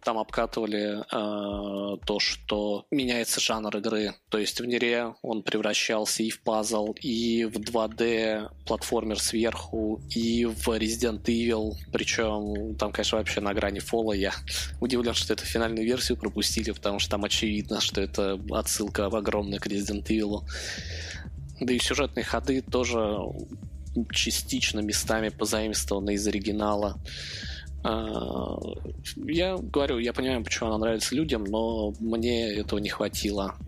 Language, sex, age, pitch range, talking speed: Russian, male, 20-39, 100-115 Hz, 130 wpm